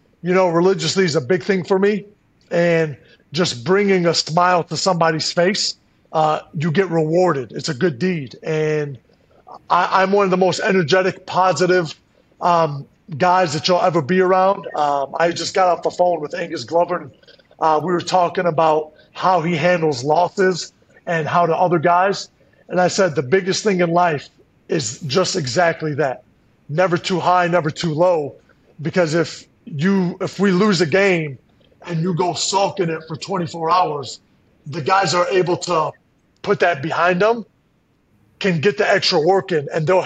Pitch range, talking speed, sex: 165-185 Hz, 170 wpm, male